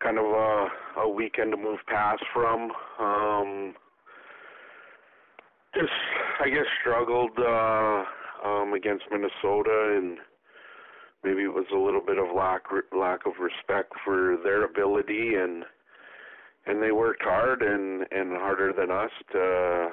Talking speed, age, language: 135 wpm, 40-59, English